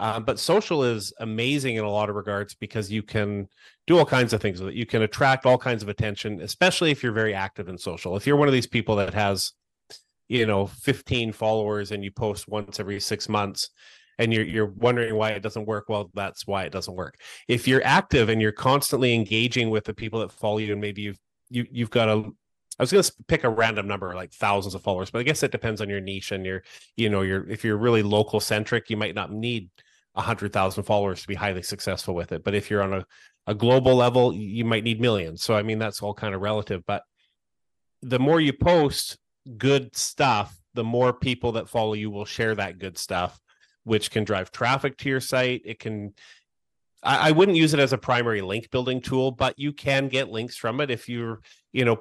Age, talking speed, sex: 30-49, 230 wpm, male